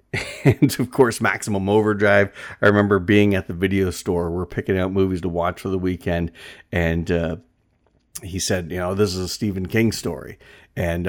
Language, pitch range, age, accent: English, 90-105 Hz, 40-59, American